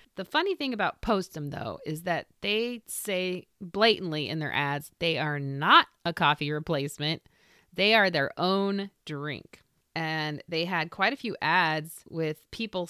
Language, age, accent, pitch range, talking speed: English, 30-49, American, 150-215 Hz, 160 wpm